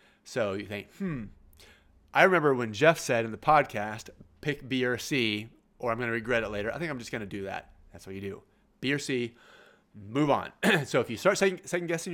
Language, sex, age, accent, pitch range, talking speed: English, male, 30-49, American, 120-160 Hz, 215 wpm